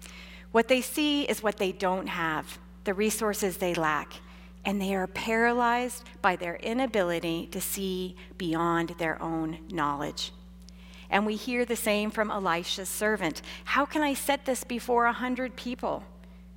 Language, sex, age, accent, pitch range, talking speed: English, female, 40-59, American, 170-225 Hz, 150 wpm